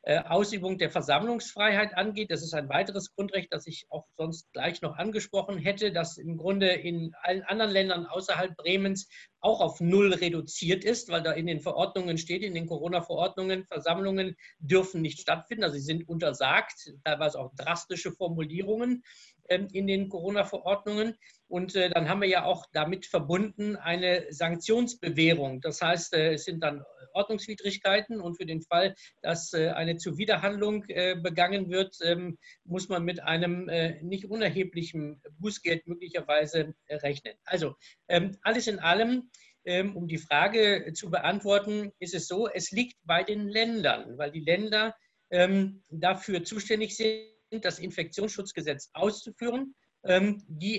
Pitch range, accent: 165-200 Hz, German